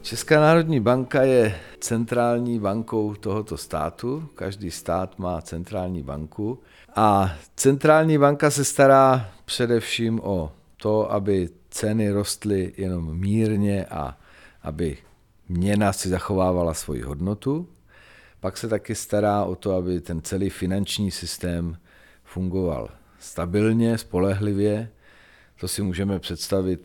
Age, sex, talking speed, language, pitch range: 50-69, male, 115 wpm, Czech, 85-105 Hz